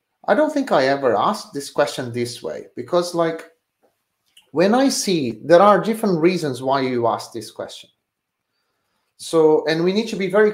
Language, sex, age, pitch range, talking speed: English, male, 30-49, 135-180 Hz, 175 wpm